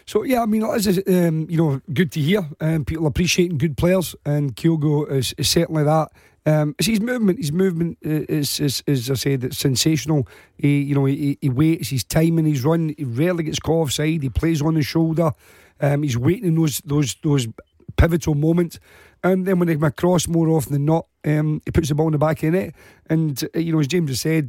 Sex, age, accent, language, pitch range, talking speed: male, 40-59, British, English, 140-165 Hz, 230 wpm